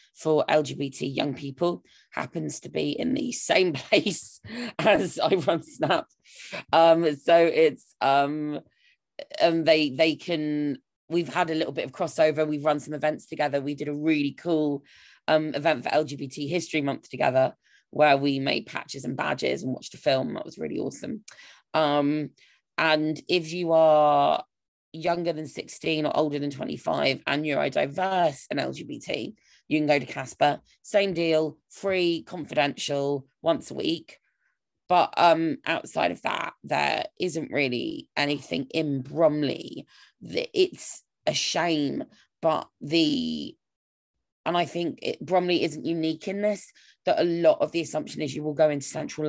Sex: female